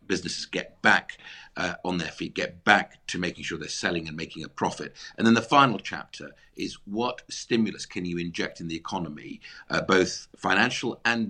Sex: male